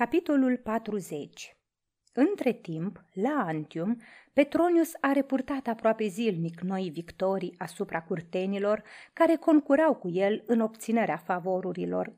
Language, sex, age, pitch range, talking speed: Romanian, female, 30-49, 180-245 Hz, 110 wpm